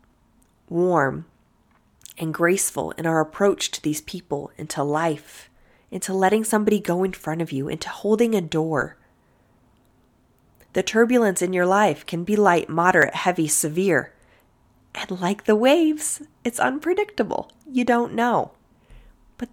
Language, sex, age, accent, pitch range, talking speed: English, female, 30-49, American, 165-215 Hz, 135 wpm